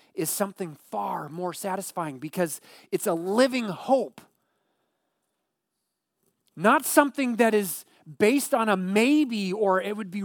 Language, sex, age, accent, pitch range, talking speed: English, male, 30-49, American, 175-220 Hz, 130 wpm